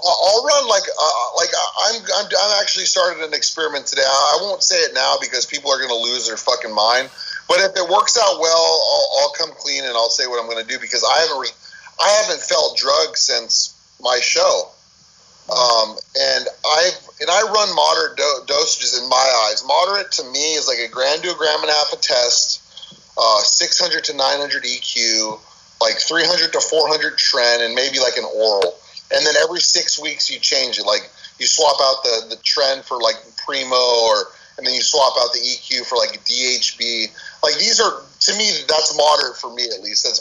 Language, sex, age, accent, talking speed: English, male, 30-49, American, 215 wpm